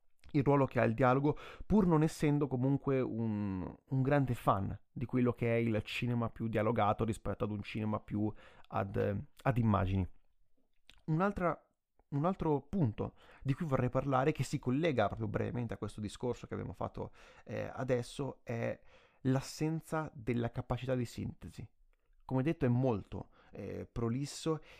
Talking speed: 150 wpm